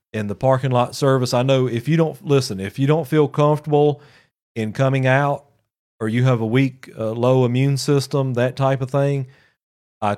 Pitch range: 120-140 Hz